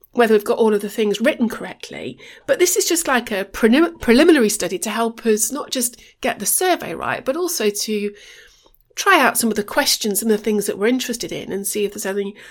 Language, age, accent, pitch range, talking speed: English, 40-59, British, 190-245 Hz, 225 wpm